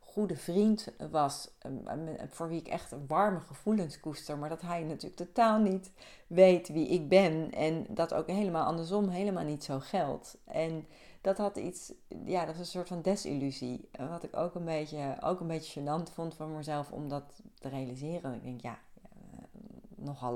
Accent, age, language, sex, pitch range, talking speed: Dutch, 40-59, Dutch, female, 135-170 Hz, 180 wpm